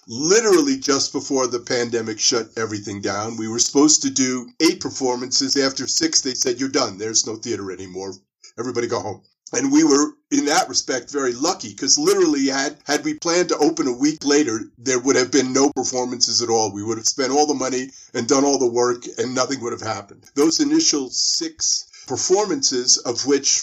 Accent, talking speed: American, 200 wpm